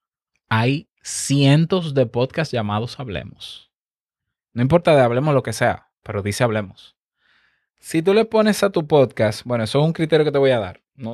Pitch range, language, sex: 115-155 Hz, Spanish, male